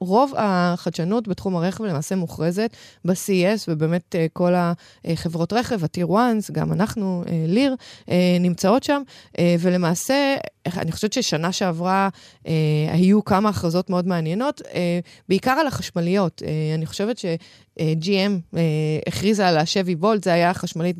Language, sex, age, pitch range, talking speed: Hebrew, female, 20-39, 170-205 Hz, 115 wpm